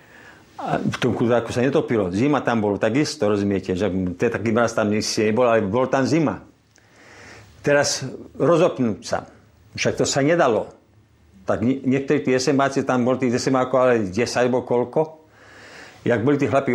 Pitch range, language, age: 110-145 Hz, Slovak, 50-69